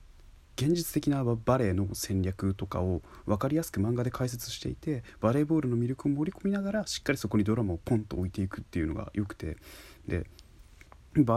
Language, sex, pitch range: Japanese, male, 95-125 Hz